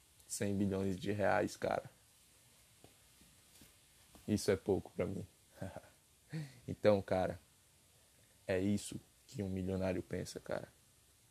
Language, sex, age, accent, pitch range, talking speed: Portuguese, male, 20-39, Brazilian, 95-110 Hz, 100 wpm